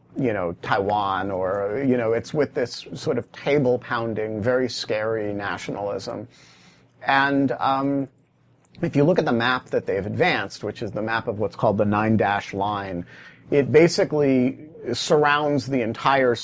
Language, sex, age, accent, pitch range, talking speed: English, male, 40-59, American, 110-140 Hz, 150 wpm